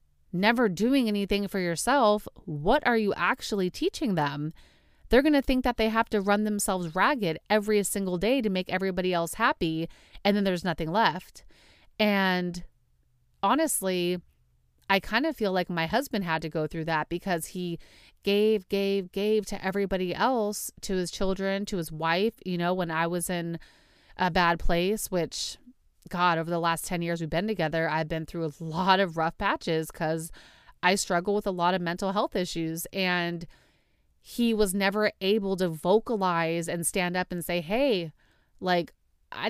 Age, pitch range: 30-49, 170-220 Hz